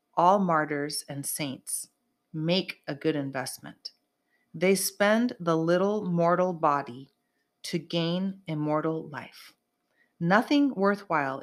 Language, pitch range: English, 155-190 Hz